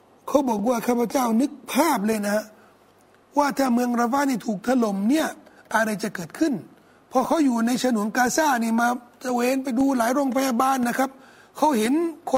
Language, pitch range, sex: Thai, 225-270 Hz, male